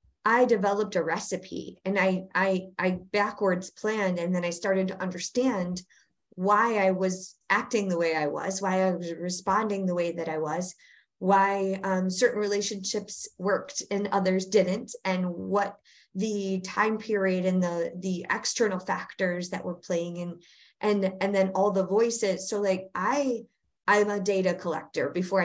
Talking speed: 165 wpm